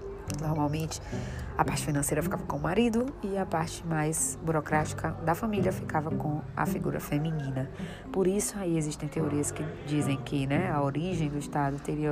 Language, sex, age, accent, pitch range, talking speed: Portuguese, female, 20-39, Brazilian, 145-185 Hz, 170 wpm